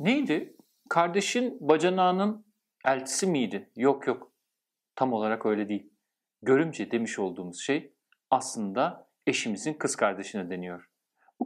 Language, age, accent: Turkish, 50-69, native